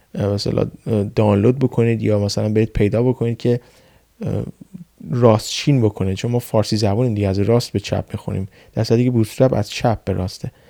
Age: 20-39